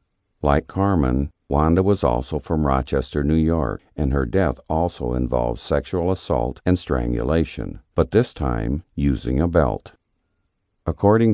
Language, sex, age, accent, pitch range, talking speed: English, male, 50-69, American, 70-95 Hz, 130 wpm